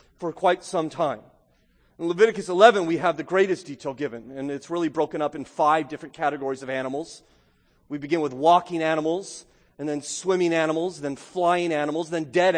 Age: 40-59